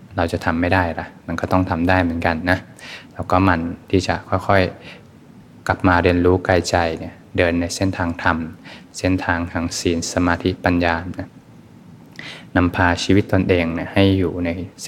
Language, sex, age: Thai, male, 20-39